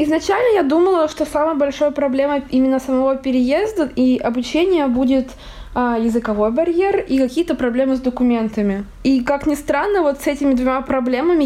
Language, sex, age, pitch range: Russian, female, 20-39, 245-280 Hz